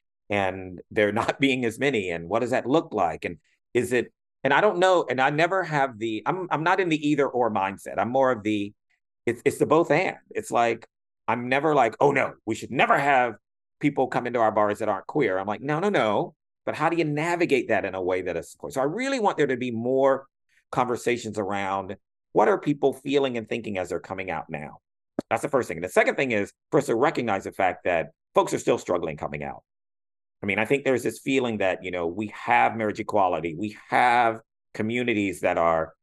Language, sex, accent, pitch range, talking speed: English, male, American, 100-135 Hz, 230 wpm